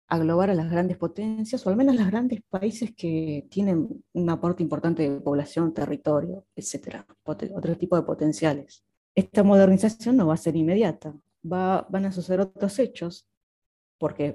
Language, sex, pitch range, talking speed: Spanish, female, 160-195 Hz, 165 wpm